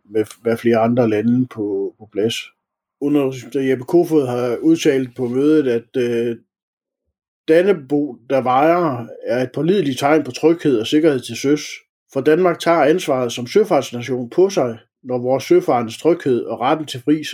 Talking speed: 160 wpm